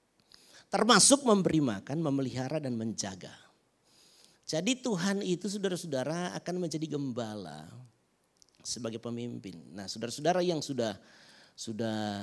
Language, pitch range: Indonesian, 140-205 Hz